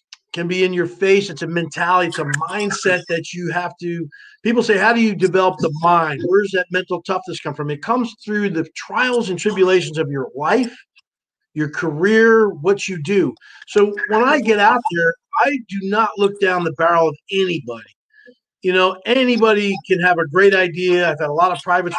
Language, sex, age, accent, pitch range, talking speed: English, male, 40-59, American, 170-215 Hz, 200 wpm